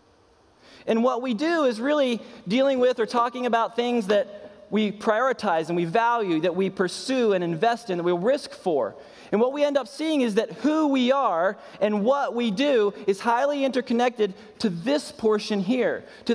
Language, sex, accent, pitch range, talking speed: English, male, American, 195-260 Hz, 185 wpm